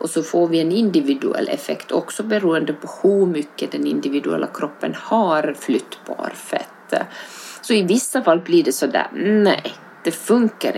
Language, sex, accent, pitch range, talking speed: Swedish, female, native, 150-205 Hz, 155 wpm